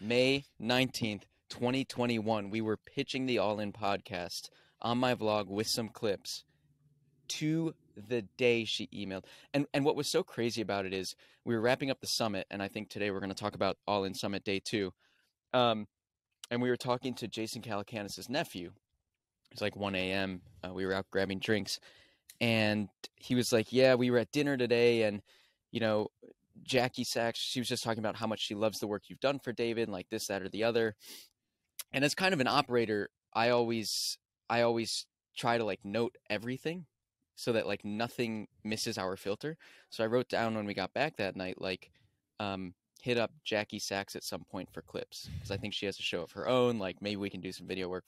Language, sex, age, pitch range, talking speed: English, male, 20-39, 100-125 Hz, 205 wpm